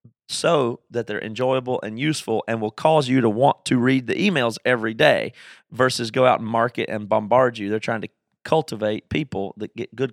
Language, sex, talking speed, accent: English, male, 200 wpm, American